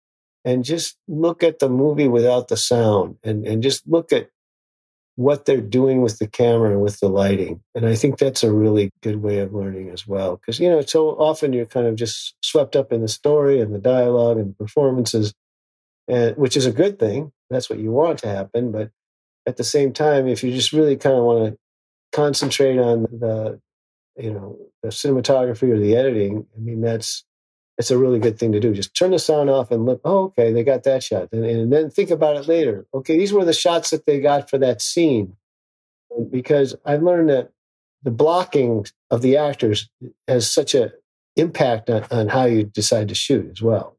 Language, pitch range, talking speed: English, 105-135 Hz, 210 wpm